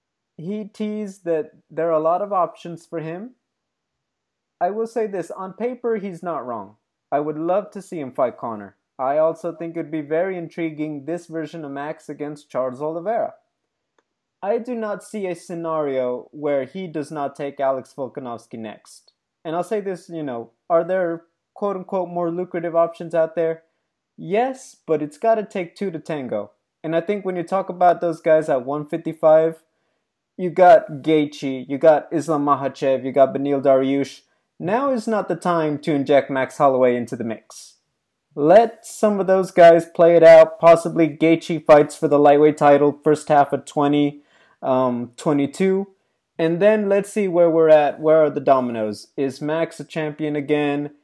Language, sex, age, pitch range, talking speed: English, male, 20-39, 145-175 Hz, 180 wpm